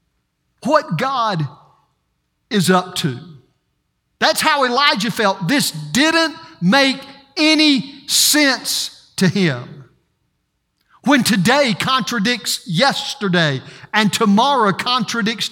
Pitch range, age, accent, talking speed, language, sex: 160-245 Hz, 50-69, American, 90 wpm, English, male